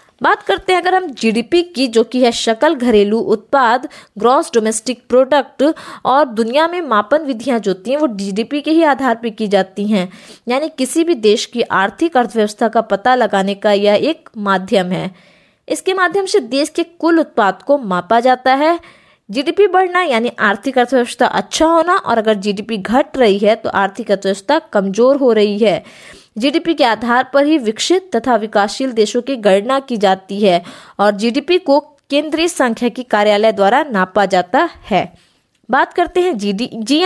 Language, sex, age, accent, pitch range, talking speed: Hindi, female, 20-39, native, 210-290 Hz, 175 wpm